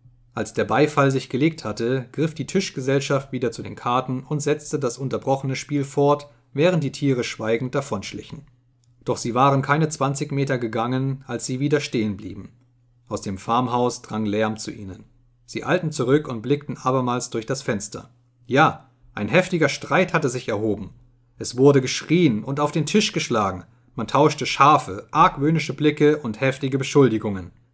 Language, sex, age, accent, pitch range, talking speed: German, male, 30-49, German, 115-145 Hz, 160 wpm